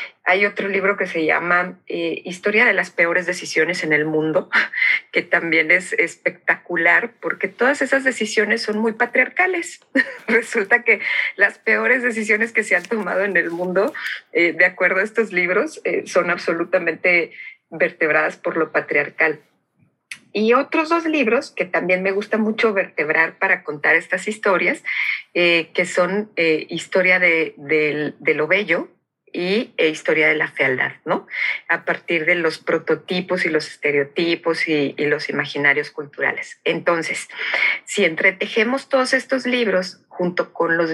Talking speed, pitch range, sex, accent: 150 wpm, 165-215 Hz, female, Mexican